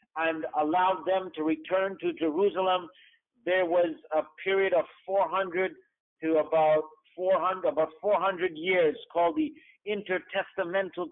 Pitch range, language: 165-205 Hz, English